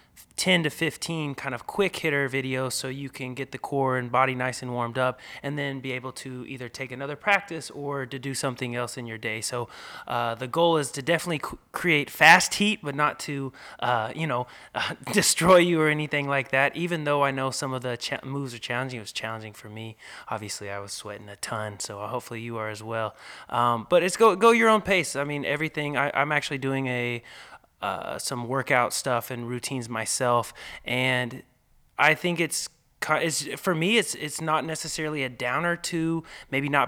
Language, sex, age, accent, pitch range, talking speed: English, male, 20-39, American, 120-145 Hz, 205 wpm